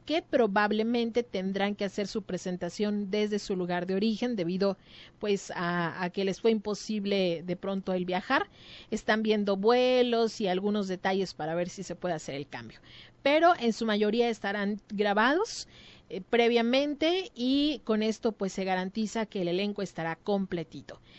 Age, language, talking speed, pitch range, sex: 30-49, Spanish, 160 wpm, 195-235 Hz, female